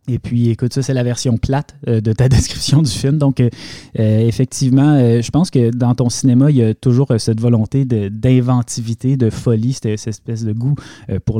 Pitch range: 110-135 Hz